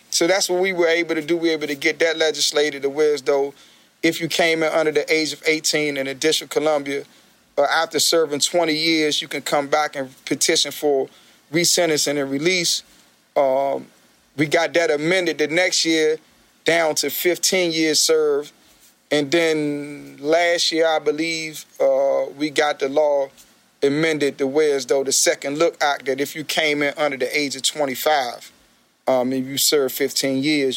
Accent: American